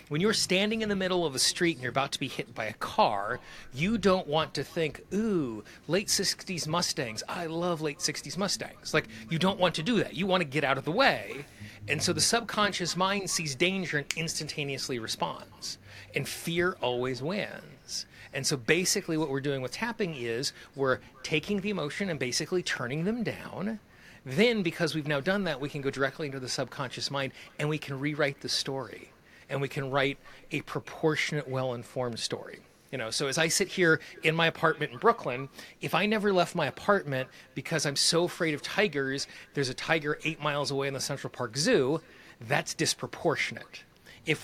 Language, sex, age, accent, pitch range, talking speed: English, male, 30-49, American, 135-175 Hz, 195 wpm